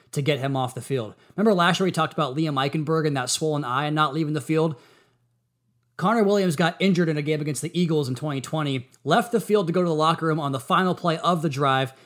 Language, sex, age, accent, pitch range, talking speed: English, male, 20-39, American, 140-170 Hz, 255 wpm